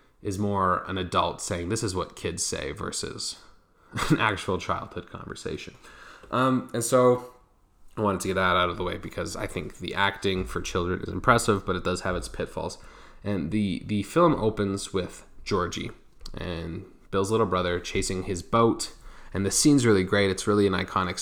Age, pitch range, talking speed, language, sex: 20-39, 90-105 Hz, 185 wpm, English, male